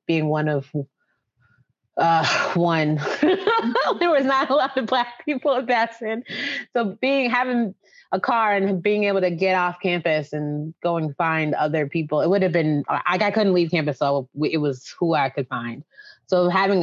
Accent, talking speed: American, 180 wpm